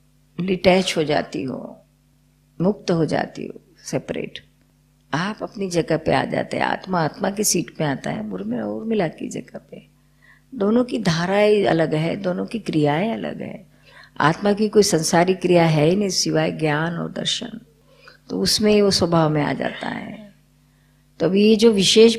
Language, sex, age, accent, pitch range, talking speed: Gujarati, female, 50-69, native, 160-210 Hz, 55 wpm